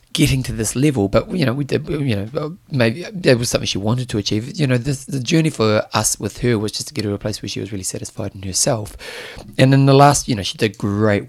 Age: 30-49